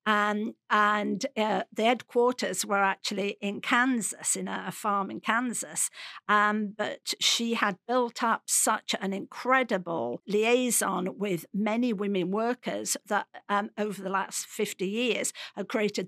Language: English